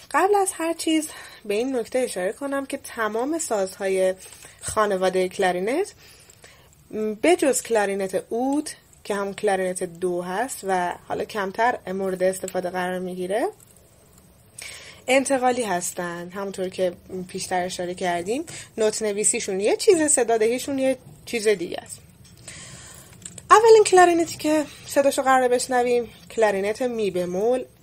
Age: 20-39